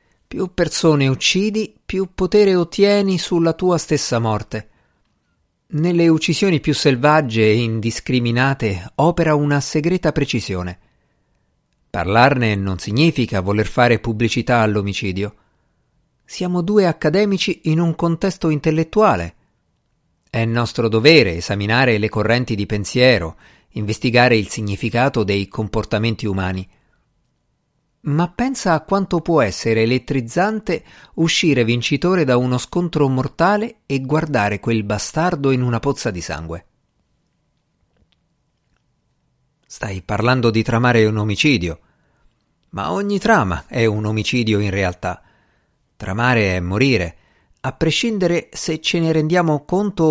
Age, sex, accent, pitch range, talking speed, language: 50-69, male, native, 105-165 Hz, 115 wpm, Italian